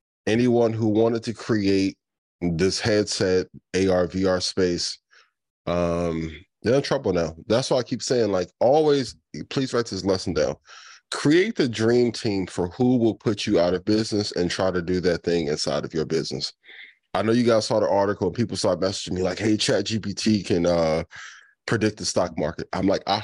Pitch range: 90-110 Hz